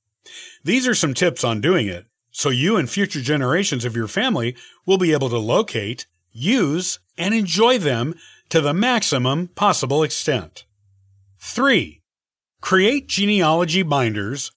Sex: male